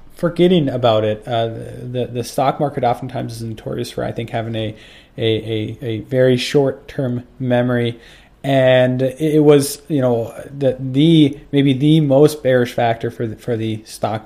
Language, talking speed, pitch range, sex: English, 175 wpm, 115-150 Hz, male